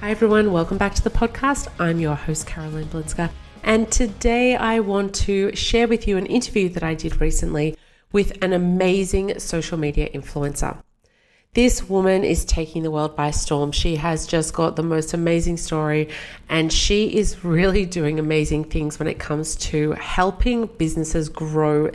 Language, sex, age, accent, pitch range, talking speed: English, female, 30-49, Australian, 155-195 Hz, 170 wpm